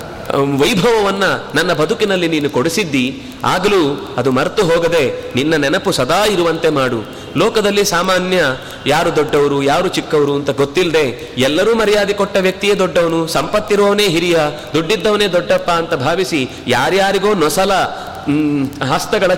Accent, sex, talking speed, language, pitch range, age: native, male, 110 wpm, Kannada, 160-205 Hz, 30-49